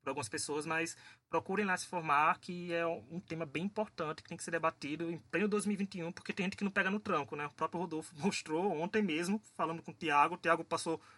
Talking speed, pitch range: 235 wpm, 160-205 Hz